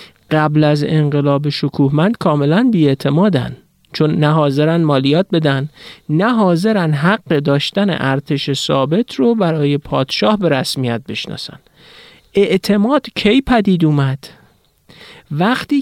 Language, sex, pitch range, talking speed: Persian, male, 130-175 Hz, 100 wpm